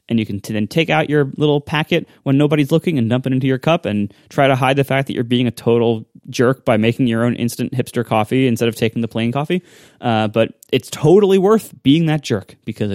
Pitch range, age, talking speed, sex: 115-150 Hz, 20-39, 240 wpm, male